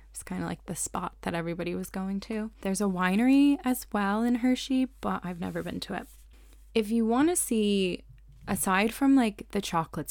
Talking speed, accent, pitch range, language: 200 wpm, American, 165-200 Hz, English